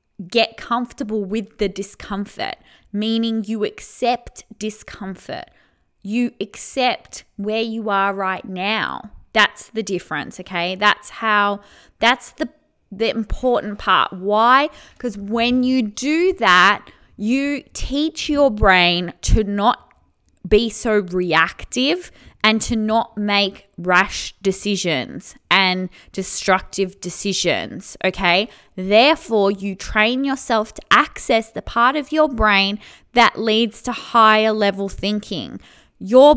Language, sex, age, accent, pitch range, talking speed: English, female, 20-39, Australian, 200-245 Hz, 115 wpm